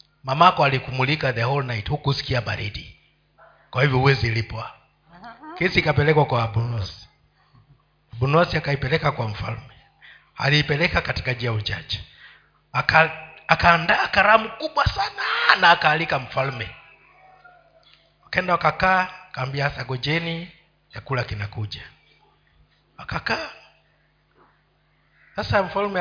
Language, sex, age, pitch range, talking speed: Swahili, male, 50-69, 130-195 Hz, 95 wpm